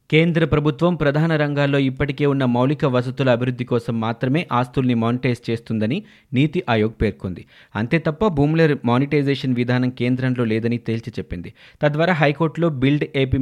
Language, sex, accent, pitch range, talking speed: Telugu, male, native, 120-150 Hz, 135 wpm